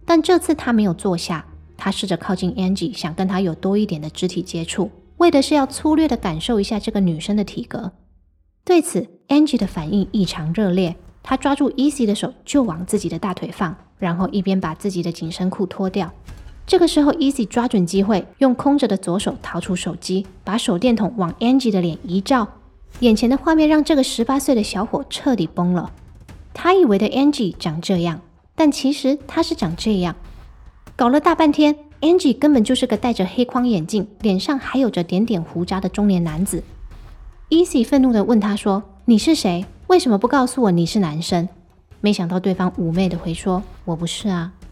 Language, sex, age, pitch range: Chinese, female, 20-39, 180-265 Hz